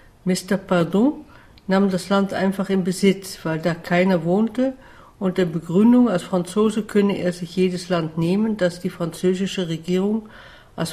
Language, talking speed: German, 150 wpm